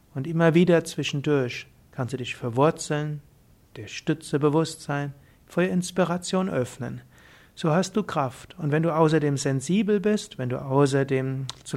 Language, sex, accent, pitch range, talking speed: German, male, German, 135-180 Hz, 150 wpm